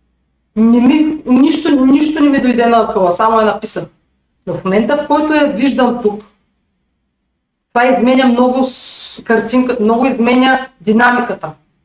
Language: Bulgarian